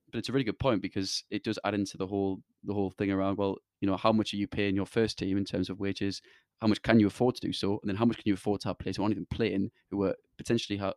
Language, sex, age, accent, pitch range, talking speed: English, male, 20-39, British, 100-110 Hz, 315 wpm